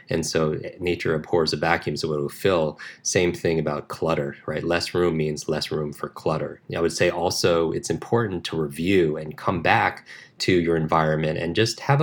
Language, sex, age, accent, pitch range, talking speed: English, male, 30-49, American, 75-90 Hz, 195 wpm